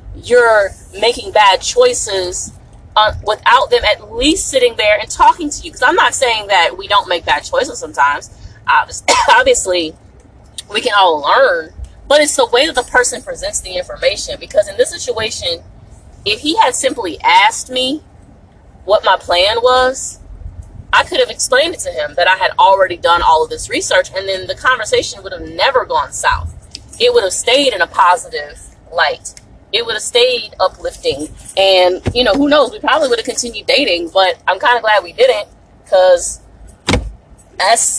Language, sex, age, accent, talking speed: English, female, 30-49, American, 180 wpm